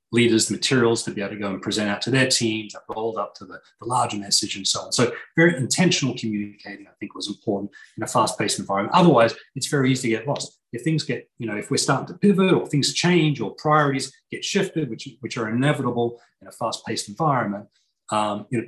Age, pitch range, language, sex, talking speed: 30-49, 105-135 Hz, English, male, 235 wpm